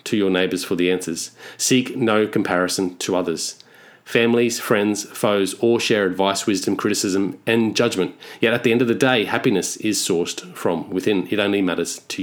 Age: 30-49